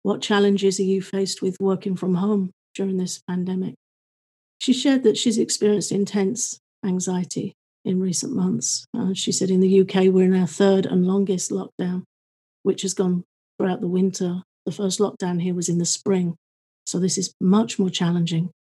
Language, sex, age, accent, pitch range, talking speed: English, female, 40-59, British, 180-195 Hz, 175 wpm